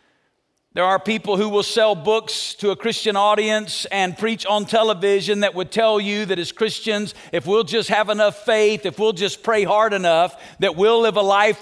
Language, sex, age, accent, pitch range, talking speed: English, male, 50-69, American, 195-225 Hz, 200 wpm